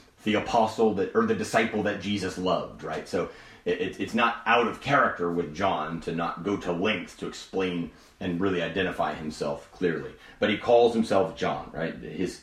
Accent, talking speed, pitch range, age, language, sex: American, 185 wpm, 90-130 Hz, 30-49, English, male